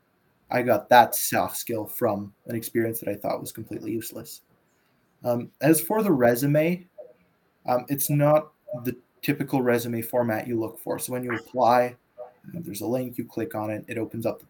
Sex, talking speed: male, 180 wpm